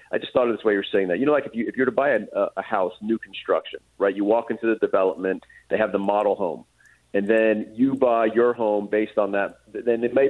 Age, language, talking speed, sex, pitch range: 40-59, English, 270 wpm, male, 105-125 Hz